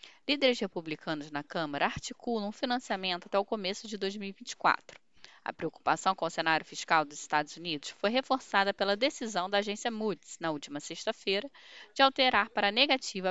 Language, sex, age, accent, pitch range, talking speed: Portuguese, female, 10-29, Brazilian, 170-235 Hz, 160 wpm